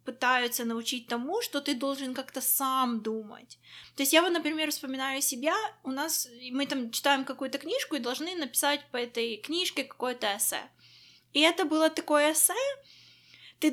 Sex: female